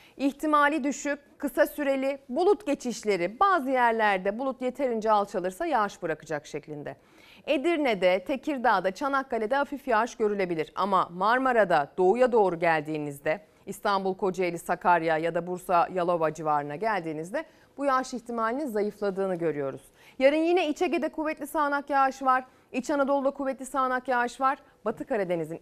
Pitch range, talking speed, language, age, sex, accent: 180-275 Hz, 125 wpm, Turkish, 40-59, female, native